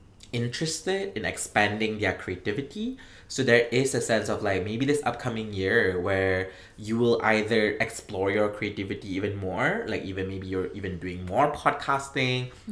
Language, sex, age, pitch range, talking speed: English, male, 20-39, 95-120 Hz, 155 wpm